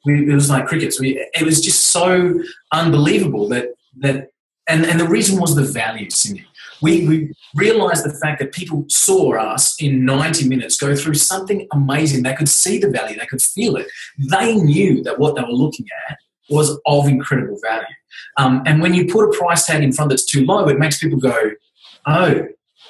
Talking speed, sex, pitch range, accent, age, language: 200 wpm, male, 135-170 Hz, Australian, 20-39, English